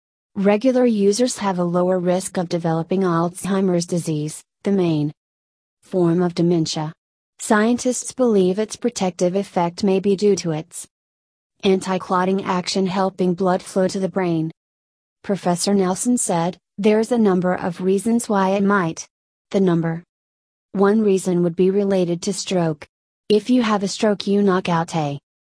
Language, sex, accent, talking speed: English, female, American, 145 wpm